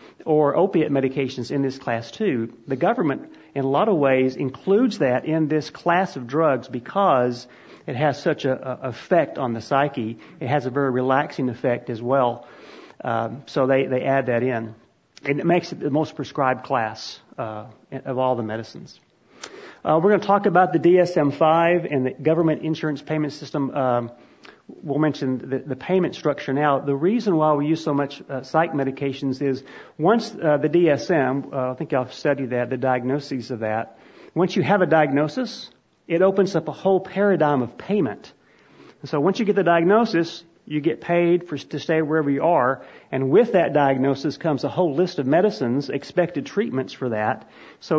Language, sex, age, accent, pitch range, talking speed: English, male, 40-59, American, 130-160 Hz, 185 wpm